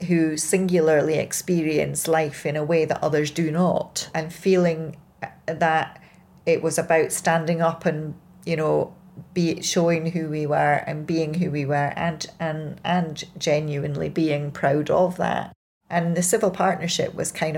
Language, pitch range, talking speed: English, 150-175 Hz, 155 wpm